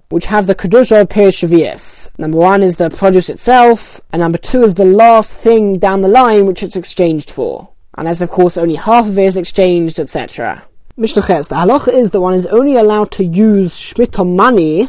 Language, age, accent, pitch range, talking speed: English, 10-29, British, 180-215 Hz, 195 wpm